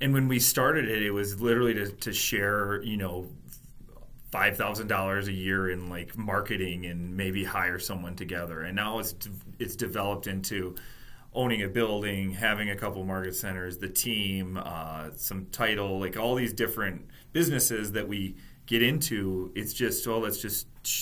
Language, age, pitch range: English, 30-49, 95-115 Hz